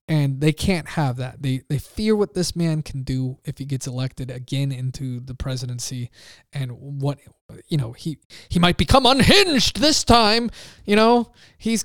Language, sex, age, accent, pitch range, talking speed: English, male, 20-39, American, 140-210 Hz, 175 wpm